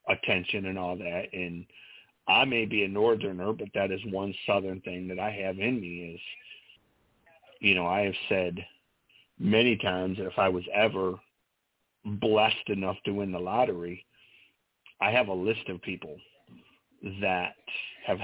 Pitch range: 95-105 Hz